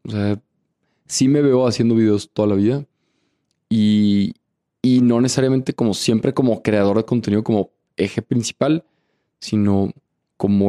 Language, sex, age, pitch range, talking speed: Spanish, male, 20-39, 105-140 Hz, 140 wpm